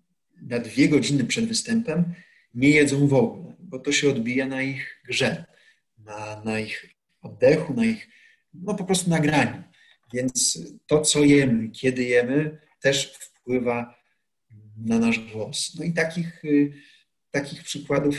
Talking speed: 140 wpm